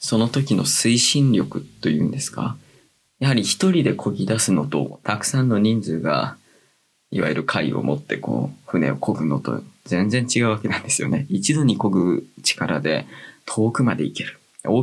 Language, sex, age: Japanese, male, 20-39